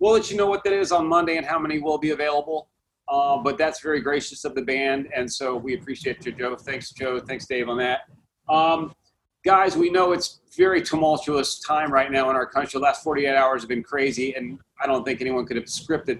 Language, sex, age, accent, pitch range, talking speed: English, male, 30-49, American, 120-155 Hz, 235 wpm